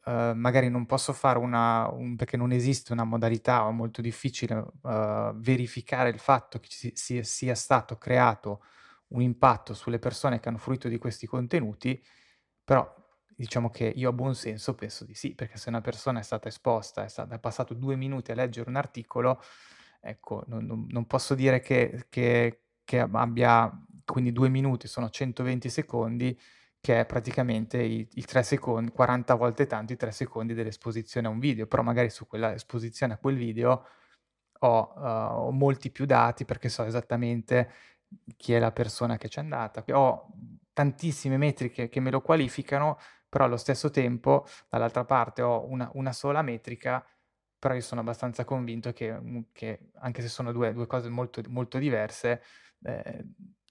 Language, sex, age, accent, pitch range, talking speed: Italian, male, 20-39, native, 115-130 Hz, 170 wpm